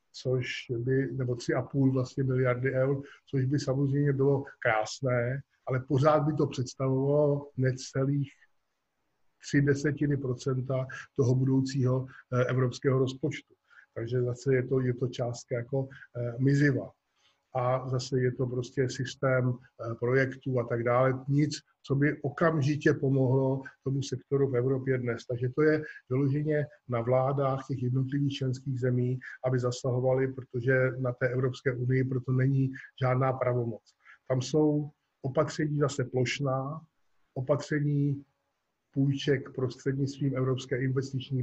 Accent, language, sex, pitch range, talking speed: native, Czech, male, 125-140 Hz, 120 wpm